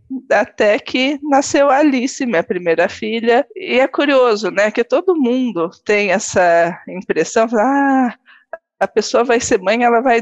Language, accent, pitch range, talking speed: Portuguese, Brazilian, 195-305 Hz, 155 wpm